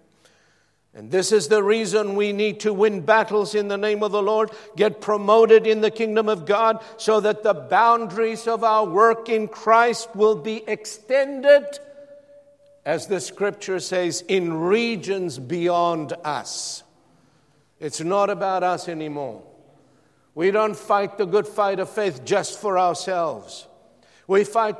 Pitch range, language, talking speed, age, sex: 195-230 Hz, English, 150 wpm, 60-79, male